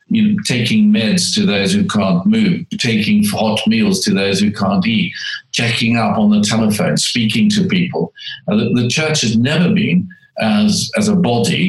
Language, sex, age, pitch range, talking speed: English, male, 50-69, 125-210 Hz, 190 wpm